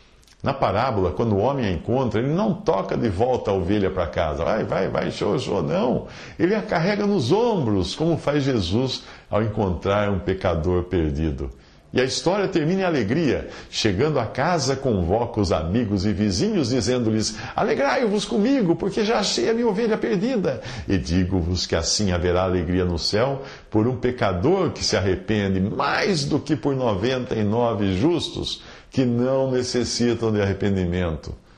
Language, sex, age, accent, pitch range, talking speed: English, male, 50-69, Brazilian, 95-135 Hz, 165 wpm